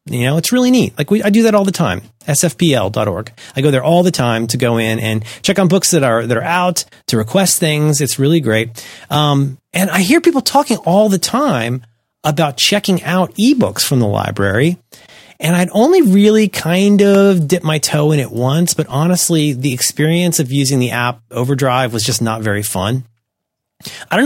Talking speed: 205 wpm